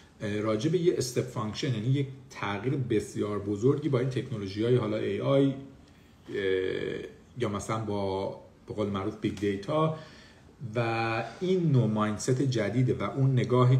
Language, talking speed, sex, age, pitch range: Persian, 130 wpm, male, 50-69, 105-135 Hz